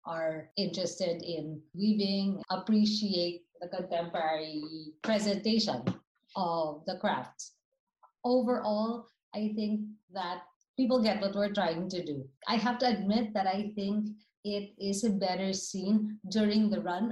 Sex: female